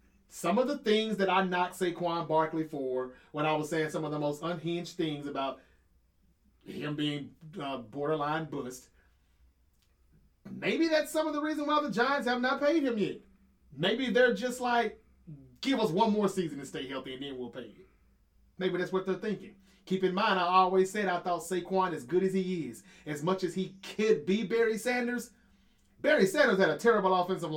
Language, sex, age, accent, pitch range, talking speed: English, male, 30-49, American, 160-220 Hz, 195 wpm